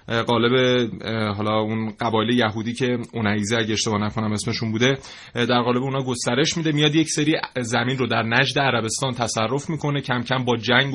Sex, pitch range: male, 115-140 Hz